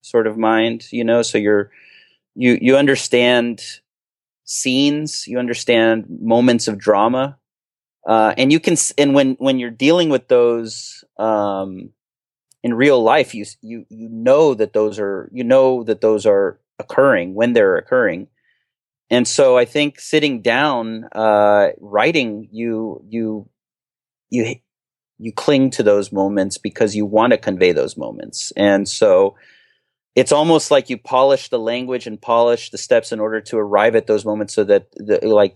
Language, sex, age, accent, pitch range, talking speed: English, male, 30-49, American, 105-135 Hz, 155 wpm